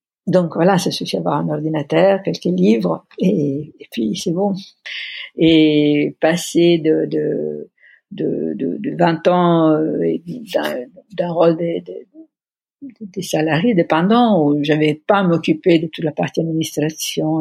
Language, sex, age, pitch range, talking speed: French, female, 60-79, 150-185 Hz, 150 wpm